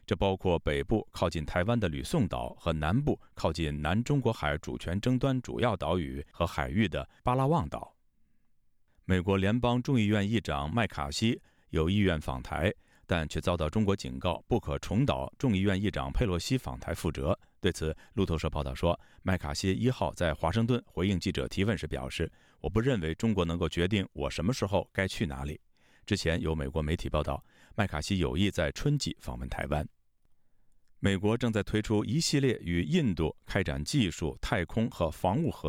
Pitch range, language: 80-110 Hz, Chinese